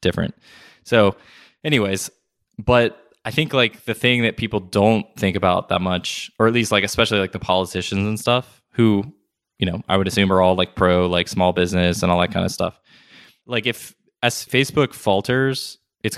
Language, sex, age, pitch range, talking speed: English, male, 20-39, 95-115 Hz, 190 wpm